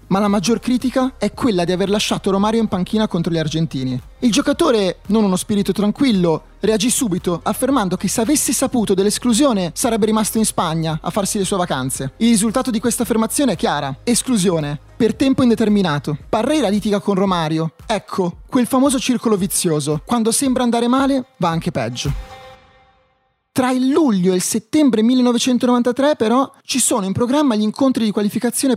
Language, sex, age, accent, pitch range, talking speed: Italian, male, 30-49, native, 175-250 Hz, 170 wpm